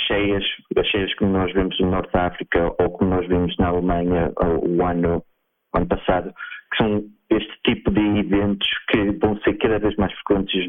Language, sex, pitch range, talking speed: Portuguese, male, 90-105 Hz, 210 wpm